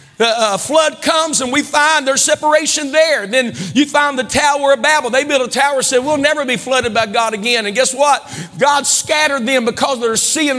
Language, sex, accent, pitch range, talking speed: English, male, American, 235-315 Hz, 220 wpm